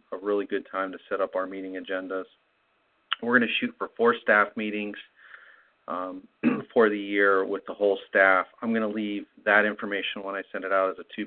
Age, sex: 40-59, male